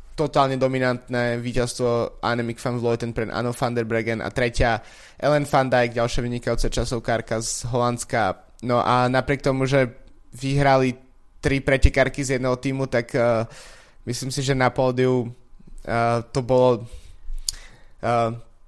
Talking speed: 135 wpm